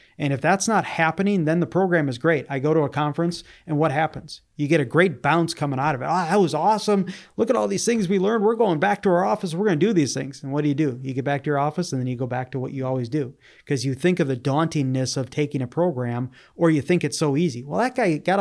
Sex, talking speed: male, 295 wpm